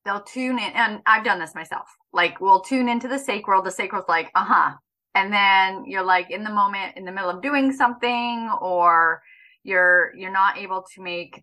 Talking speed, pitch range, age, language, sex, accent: 200 wpm, 190-260 Hz, 30-49, English, female, American